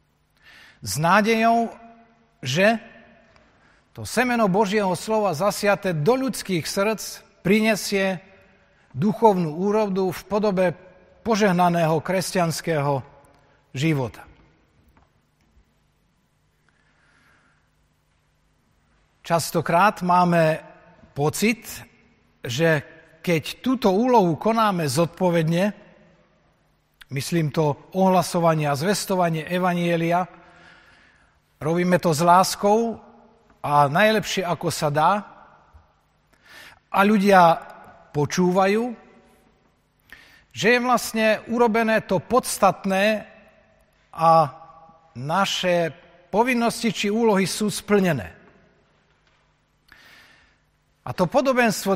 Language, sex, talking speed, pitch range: Slovak, male, 70 wpm, 165-215 Hz